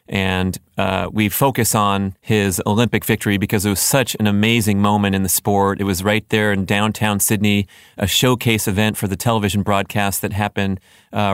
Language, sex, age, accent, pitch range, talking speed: English, male, 30-49, American, 105-120 Hz, 185 wpm